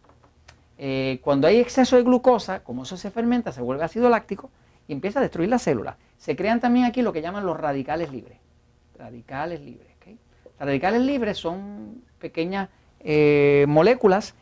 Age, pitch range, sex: 40-59, 140-205 Hz, male